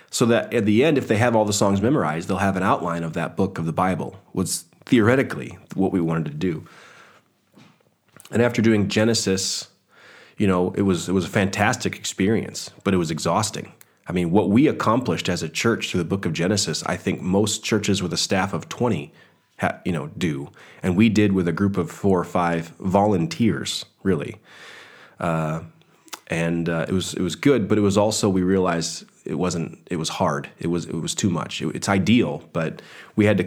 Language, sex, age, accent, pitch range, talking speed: English, male, 30-49, American, 90-105 Hz, 205 wpm